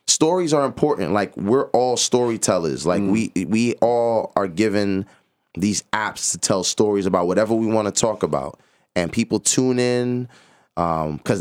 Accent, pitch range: American, 95-125 Hz